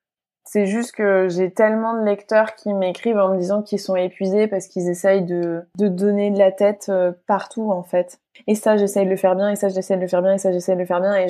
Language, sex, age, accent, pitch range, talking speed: French, female, 20-39, French, 180-215 Hz, 260 wpm